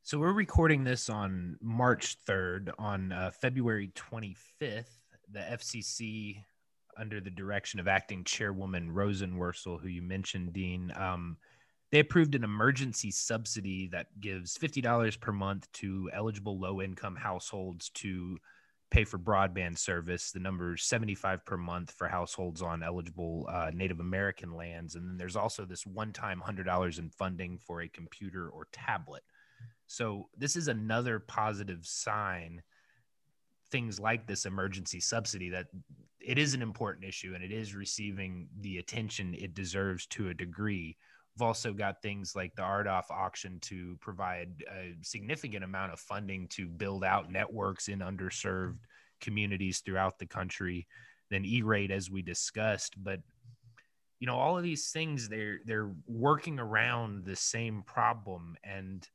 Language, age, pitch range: English, 20-39, 90-110 Hz